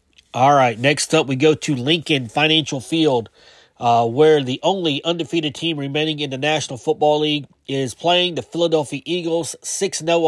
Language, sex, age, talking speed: English, male, 30-49, 165 wpm